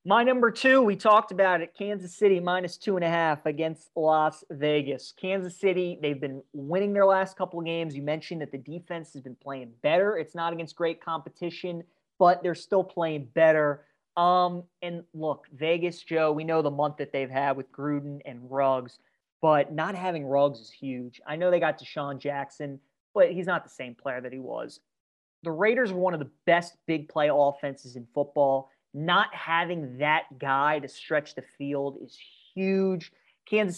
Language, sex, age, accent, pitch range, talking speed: English, male, 30-49, American, 140-175 Hz, 185 wpm